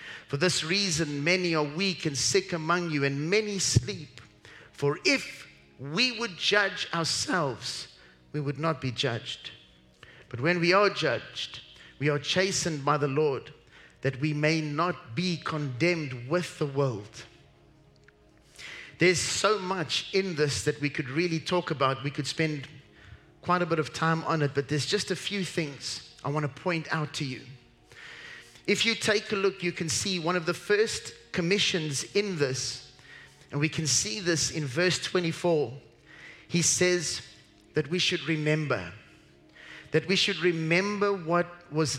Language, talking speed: English, 160 wpm